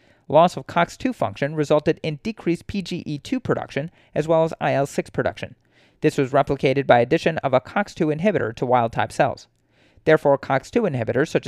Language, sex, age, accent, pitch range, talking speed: English, male, 30-49, American, 130-170 Hz, 155 wpm